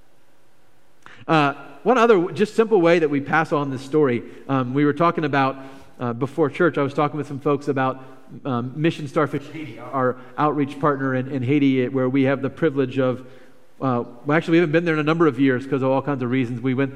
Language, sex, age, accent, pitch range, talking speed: English, male, 40-59, American, 130-150 Hz, 225 wpm